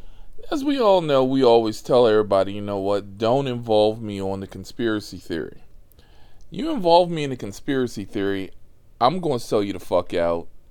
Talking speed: 185 wpm